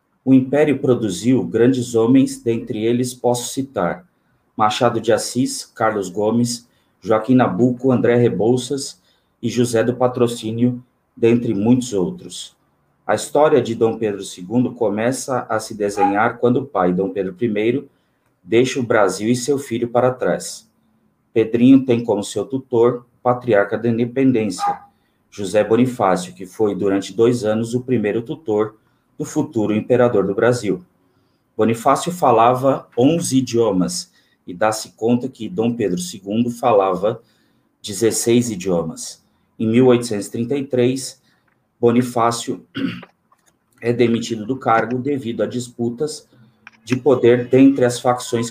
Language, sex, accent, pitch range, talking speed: Portuguese, male, Brazilian, 110-125 Hz, 125 wpm